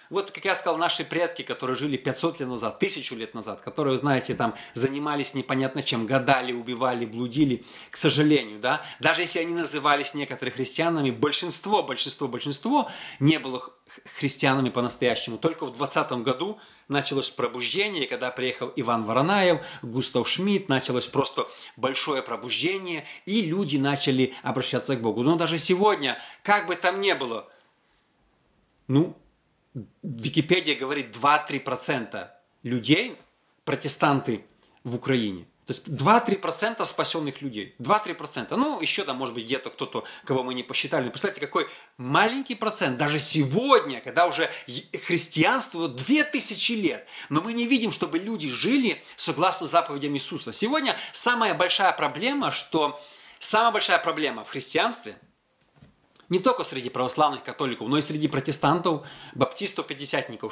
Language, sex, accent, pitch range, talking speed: Russian, male, native, 130-175 Hz, 140 wpm